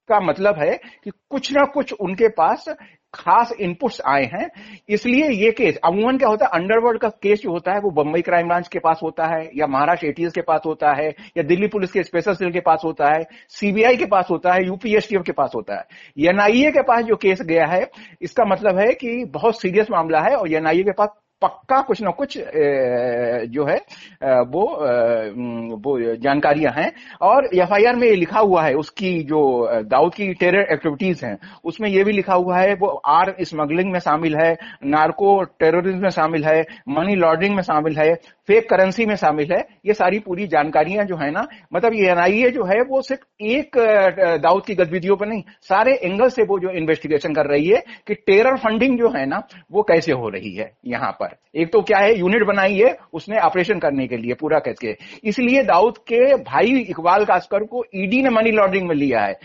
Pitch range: 160-220 Hz